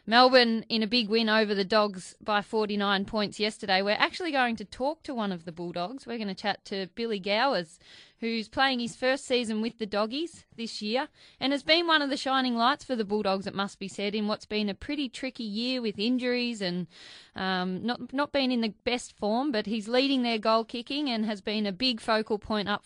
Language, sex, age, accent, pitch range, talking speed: English, female, 20-39, Australian, 200-240 Hz, 225 wpm